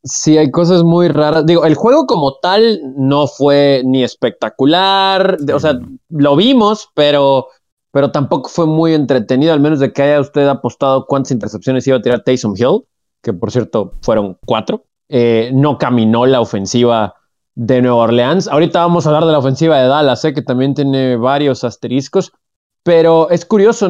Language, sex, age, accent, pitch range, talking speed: Spanish, male, 20-39, Mexican, 135-190 Hz, 170 wpm